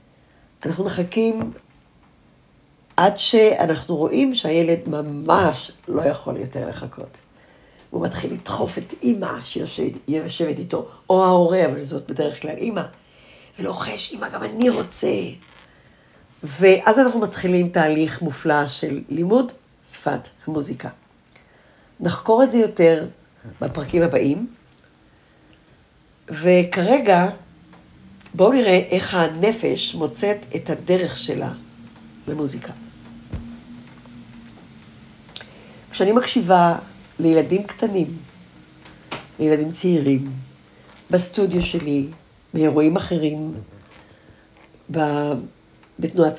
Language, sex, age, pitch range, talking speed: Hebrew, female, 50-69, 145-185 Hz, 85 wpm